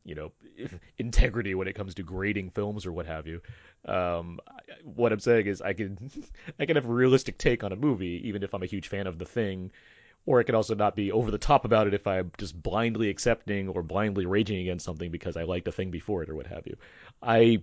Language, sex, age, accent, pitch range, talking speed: English, male, 30-49, American, 95-115 Hz, 240 wpm